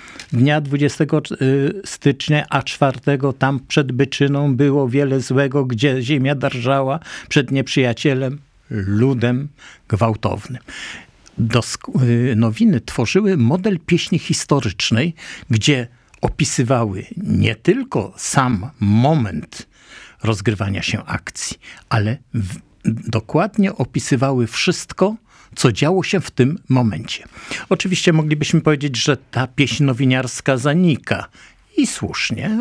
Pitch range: 115-150 Hz